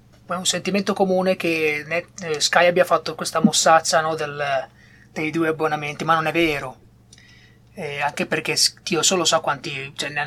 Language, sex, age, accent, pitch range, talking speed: Italian, male, 20-39, native, 155-190 Hz, 160 wpm